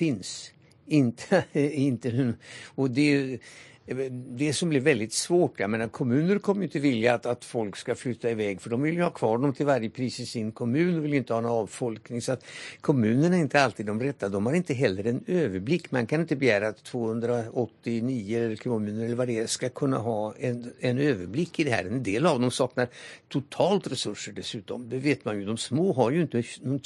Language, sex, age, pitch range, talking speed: Swedish, male, 60-79, 115-155 Hz, 215 wpm